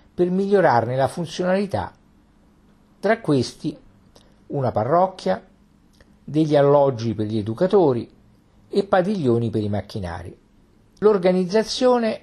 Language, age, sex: Italian, 50-69, male